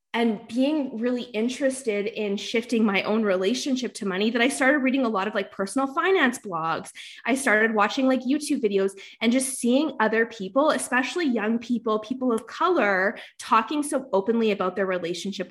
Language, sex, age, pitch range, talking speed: English, female, 20-39, 200-270 Hz, 175 wpm